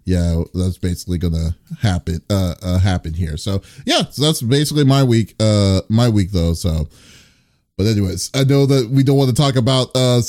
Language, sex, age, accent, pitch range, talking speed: English, male, 30-49, American, 110-135 Hz, 195 wpm